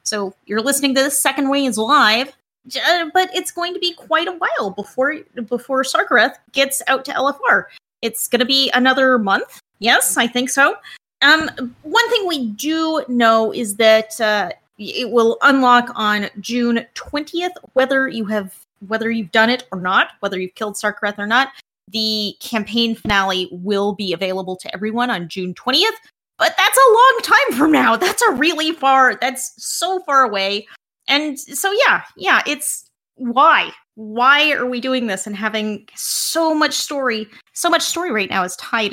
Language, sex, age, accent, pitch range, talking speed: English, female, 30-49, American, 220-285 Hz, 175 wpm